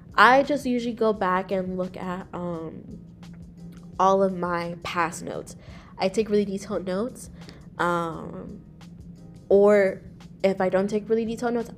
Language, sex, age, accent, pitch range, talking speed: English, female, 20-39, American, 170-200 Hz, 145 wpm